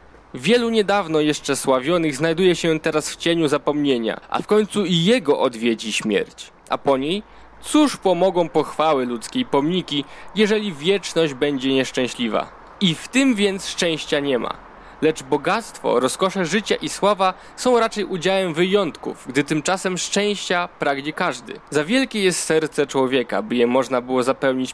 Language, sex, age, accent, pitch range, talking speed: Polish, male, 20-39, native, 140-190 Hz, 150 wpm